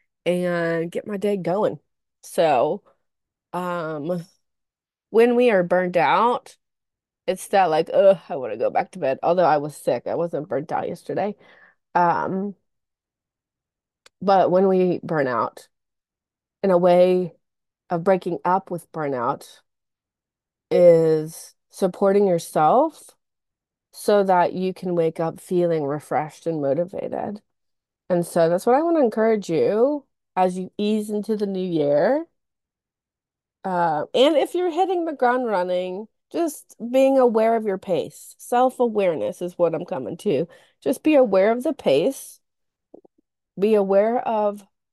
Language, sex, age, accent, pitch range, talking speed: English, female, 20-39, American, 175-230 Hz, 140 wpm